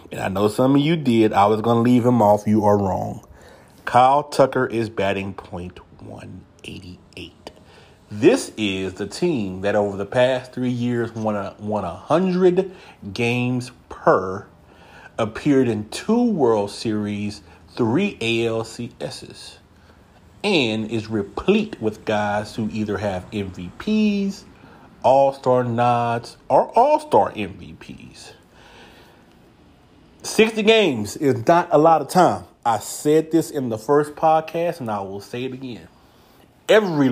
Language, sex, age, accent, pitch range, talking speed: English, male, 30-49, American, 100-130 Hz, 130 wpm